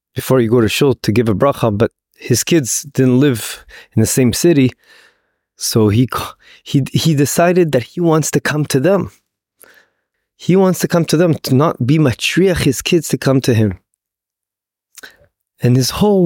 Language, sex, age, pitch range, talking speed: English, male, 20-39, 120-165 Hz, 180 wpm